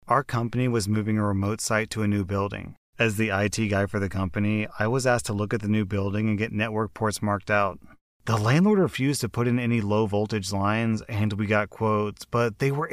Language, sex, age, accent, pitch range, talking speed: English, male, 30-49, American, 105-120 Hz, 230 wpm